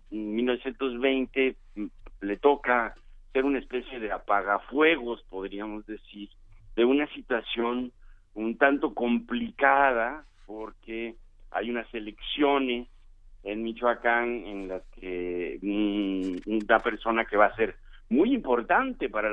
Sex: male